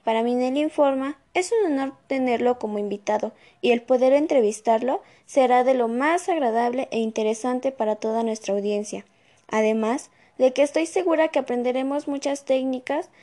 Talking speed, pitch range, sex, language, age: 155 wpm, 230-280 Hz, female, Spanish, 10-29